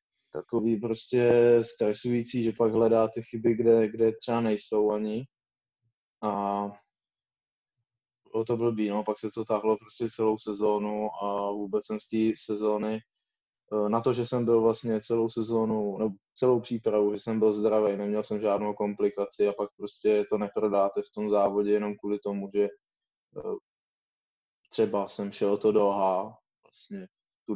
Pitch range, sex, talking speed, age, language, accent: 100-115 Hz, male, 150 wpm, 20-39, Czech, native